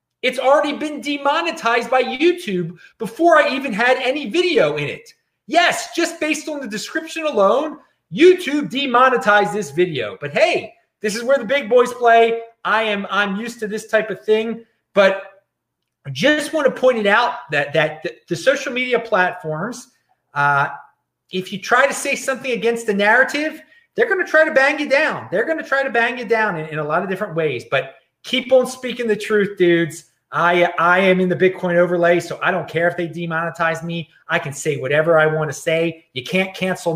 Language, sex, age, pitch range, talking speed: English, male, 30-49, 165-245 Hz, 200 wpm